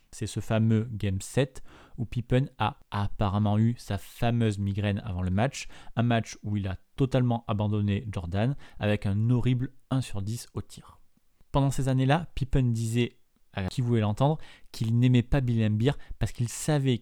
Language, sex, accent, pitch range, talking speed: French, male, French, 105-130 Hz, 175 wpm